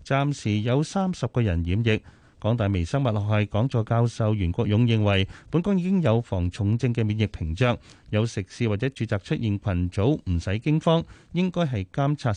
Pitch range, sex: 100-140 Hz, male